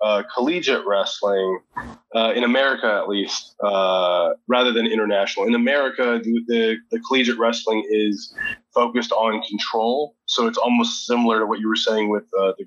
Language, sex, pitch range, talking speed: English, male, 110-130 Hz, 165 wpm